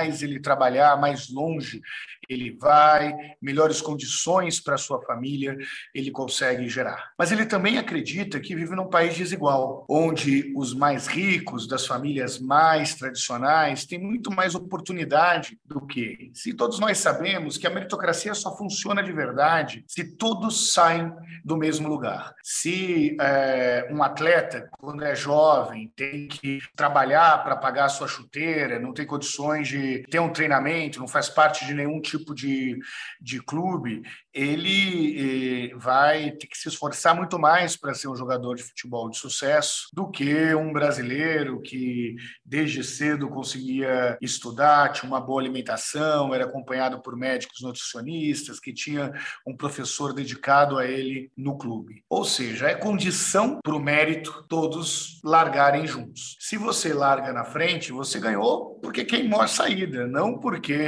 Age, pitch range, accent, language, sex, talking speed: 50-69, 130-160 Hz, Brazilian, Portuguese, male, 150 wpm